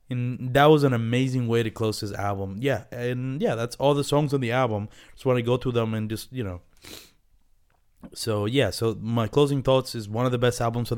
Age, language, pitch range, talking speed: 20-39, English, 105-140 Hz, 235 wpm